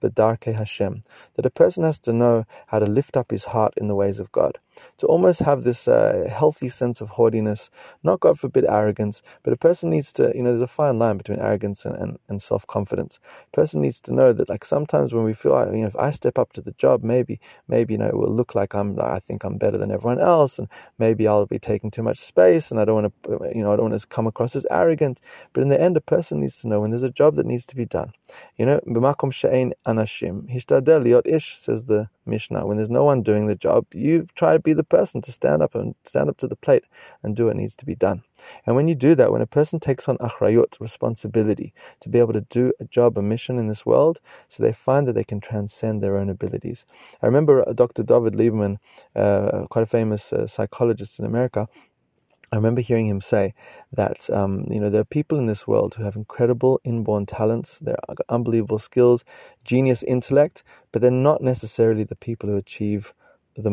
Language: English